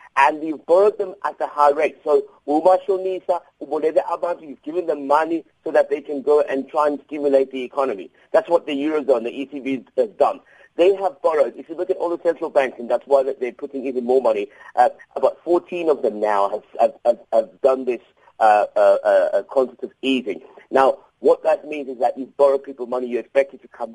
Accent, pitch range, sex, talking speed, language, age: British, 140-190 Hz, male, 225 wpm, English, 50-69